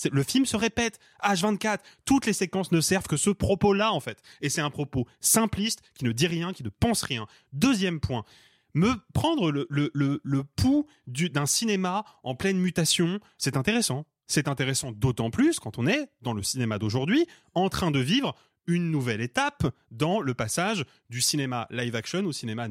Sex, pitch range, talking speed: male, 130-190 Hz, 185 wpm